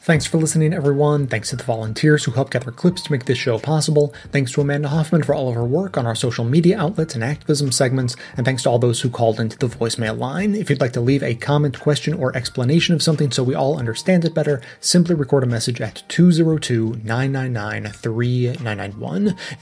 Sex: male